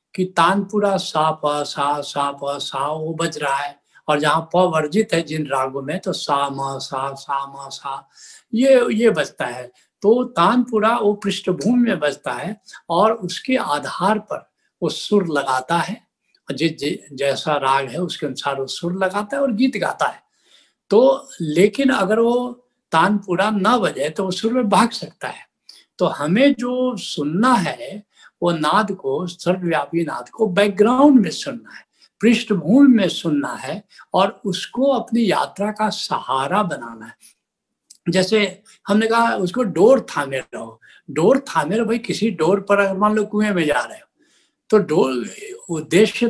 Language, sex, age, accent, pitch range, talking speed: Hindi, male, 60-79, native, 160-230 Hz, 145 wpm